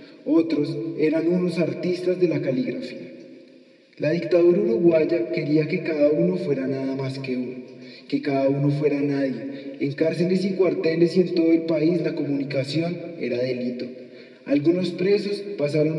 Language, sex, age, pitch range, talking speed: English, male, 20-39, 145-170 Hz, 150 wpm